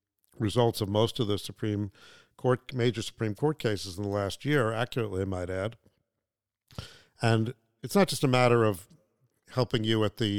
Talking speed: 175 wpm